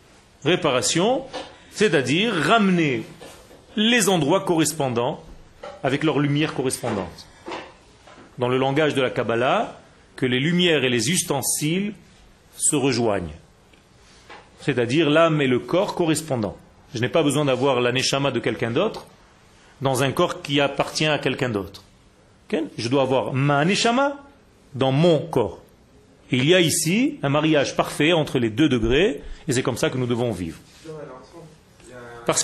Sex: male